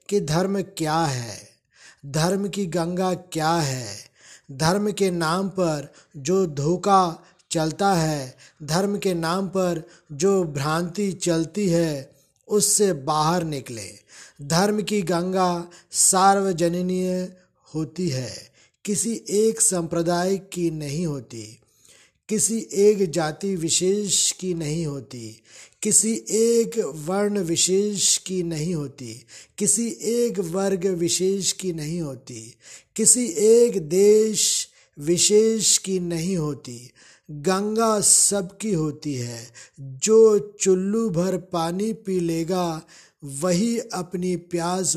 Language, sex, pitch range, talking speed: Hindi, male, 155-195 Hz, 110 wpm